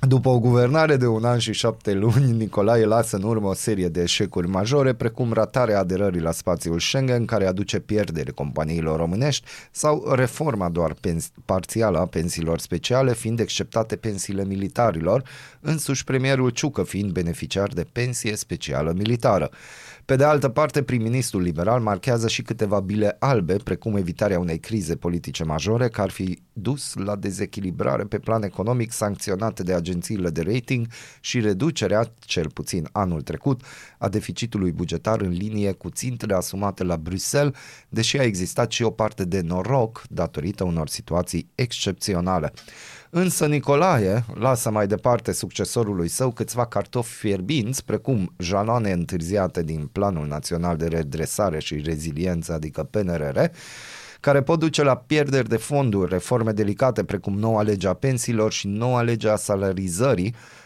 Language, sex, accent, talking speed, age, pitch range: Romanian, male, native, 145 wpm, 30-49, 90-120 Hz